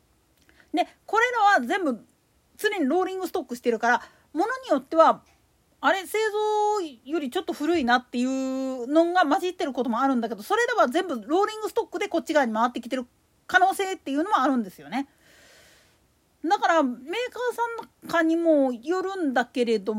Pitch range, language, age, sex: 255-370 Hz, Japanese, 40-59, female